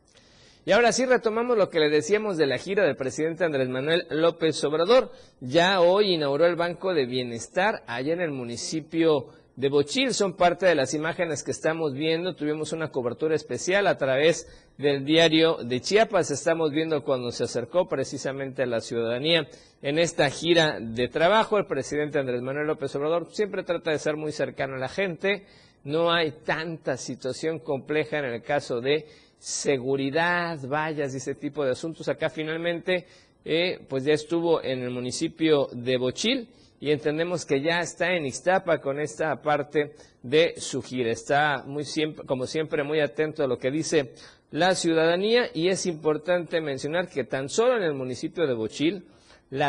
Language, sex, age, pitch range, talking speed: Spanish, male, 50-69, 140-170 Hz, 175 wpm